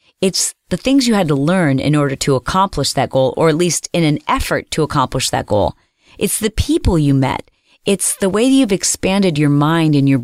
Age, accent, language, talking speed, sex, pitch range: 30-49, American, English, 215 wpm, female, 145-210 Hz